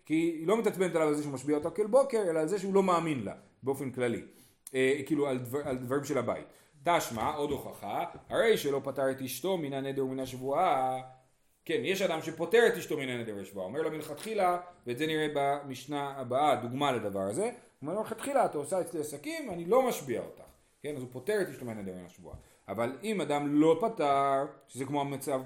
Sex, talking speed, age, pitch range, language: male, 155 wpm, 30-49, 135-210 Hz, Hebrew